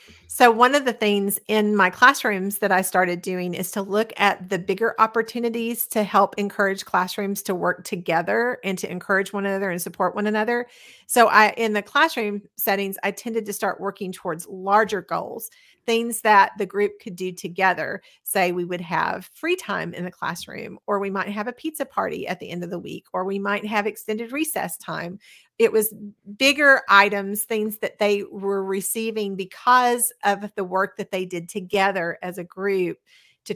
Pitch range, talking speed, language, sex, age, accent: 195-230 Hz, 190 wpm, English, female, 40-59, American